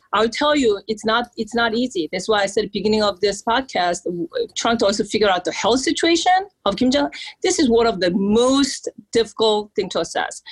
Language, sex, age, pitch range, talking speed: English, female, 40-59, 200-255 Hz, 215 wpm